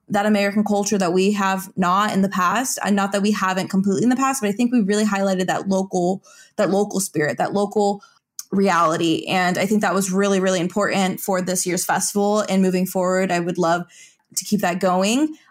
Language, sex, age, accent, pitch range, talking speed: English, female, 20-39, American, 185-210 Hz, 215 wpm